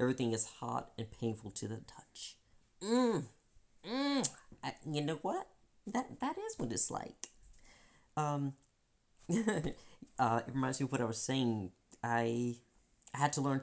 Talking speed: 155 wpm